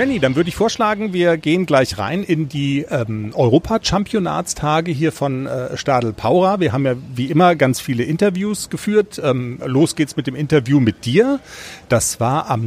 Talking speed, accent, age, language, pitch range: 180 wpm, German, 40-59, German, 130-180 Hz